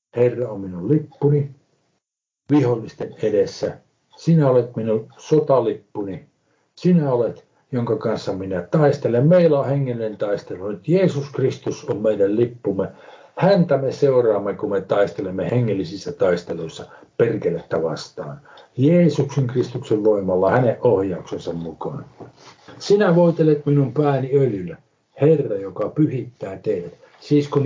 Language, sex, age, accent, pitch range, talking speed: Finnish, male, 60-79, native, 110-150 Hz, 115 wpm